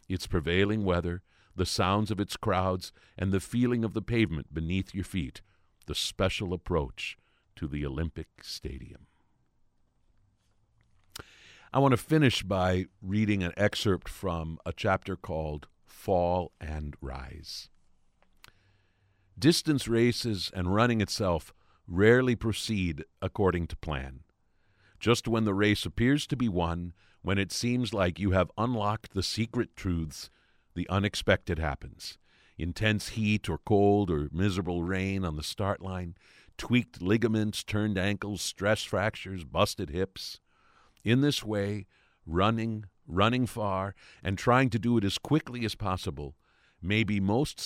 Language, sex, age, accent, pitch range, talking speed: English, male, 50-69, American, 90-110 Hz, 135 wpm